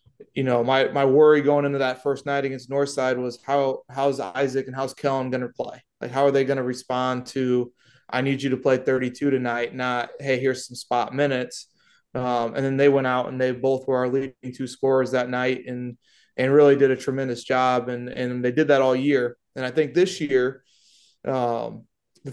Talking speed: 210 wpm